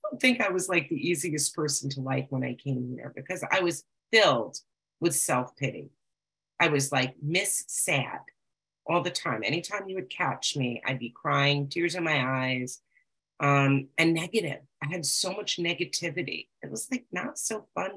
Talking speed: 175 wpm